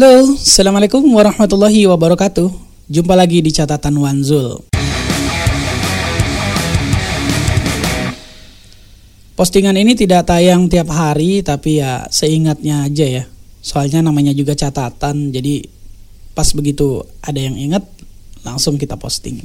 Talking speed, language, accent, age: 100 wpm, Indonesian, native, 20-39